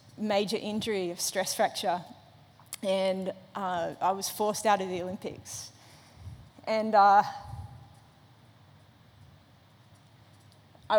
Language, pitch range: English, 175-210 Hz